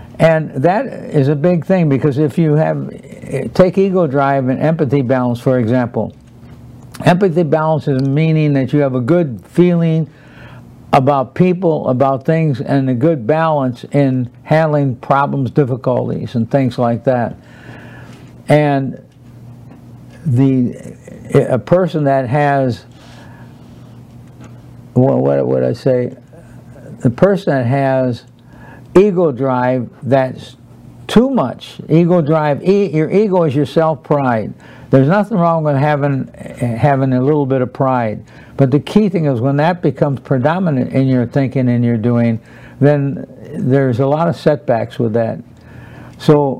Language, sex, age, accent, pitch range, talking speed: English, male, 60-79, American, 125-155 Hz, 135 wpm